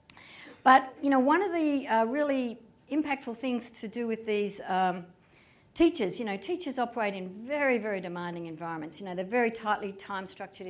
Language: English